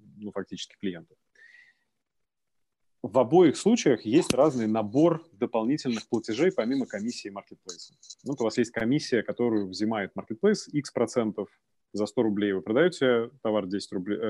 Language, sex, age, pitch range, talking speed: Russian, male, 30-49, 105-130 Hz, 140 wpm